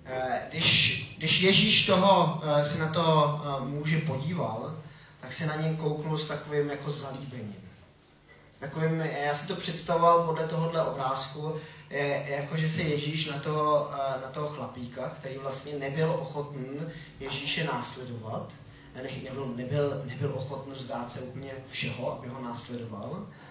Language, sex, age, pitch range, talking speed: Czech, male, 20-39, 130-160 Hz, 130 wpm